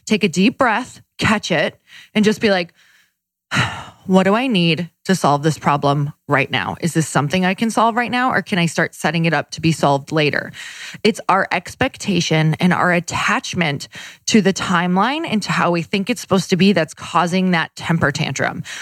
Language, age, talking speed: English, 20-39, 200 wpm